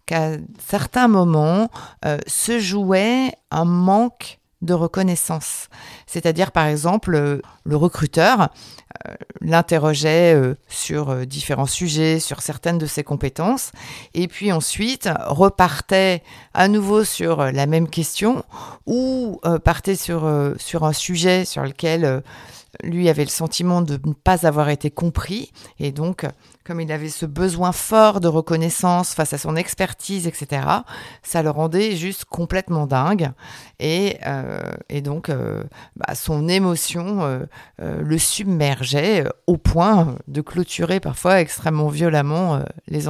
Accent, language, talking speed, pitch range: French, French, 140 wpm, 150-185 Hz